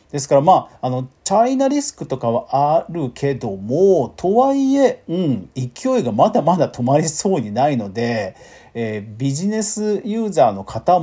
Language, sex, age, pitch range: Japanese, male, 40-59, 120-195 Hz